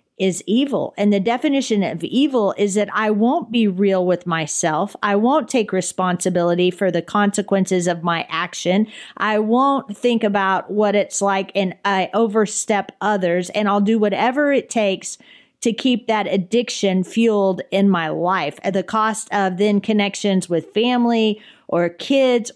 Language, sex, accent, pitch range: English, female, American, 185-225 Hz